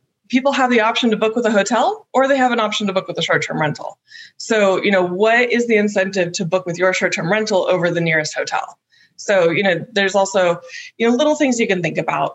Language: English